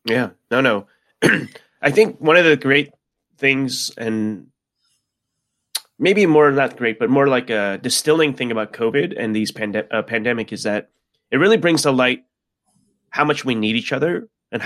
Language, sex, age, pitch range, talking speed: English, male, 30-49, 110-135 Hz, 170 wpm